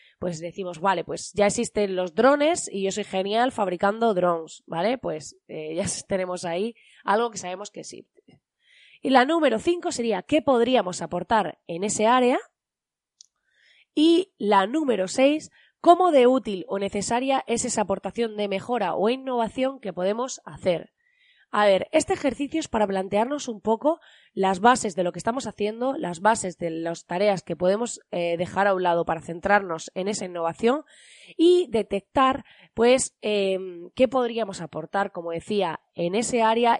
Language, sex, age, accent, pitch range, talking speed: Spanish, female, 20-39, Spanish, 185-250 Hz, 165 wpm